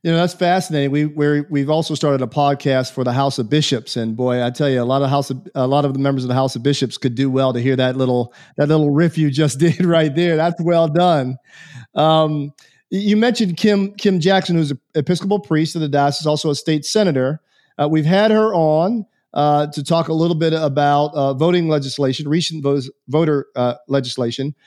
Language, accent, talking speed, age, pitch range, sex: English, American, 220 wpm, 40-59, 135-165 Hz, male